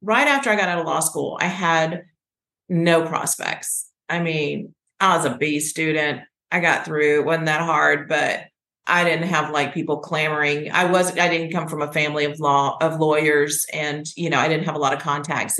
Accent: American